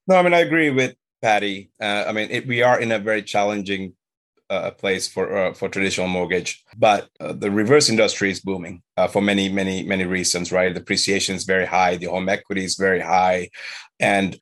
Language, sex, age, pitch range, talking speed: English, male, 30-49, 95-120 Hz, 205 wpm